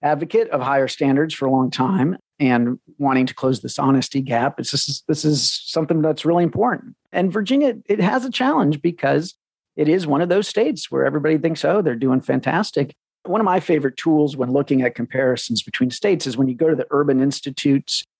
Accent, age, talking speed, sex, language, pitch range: American, 50-69, 205 wpm, male, English, 130-170 Hz